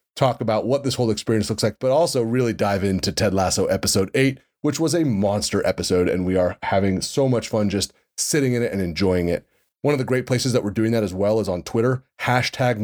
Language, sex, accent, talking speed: English, male, American, 240 wpm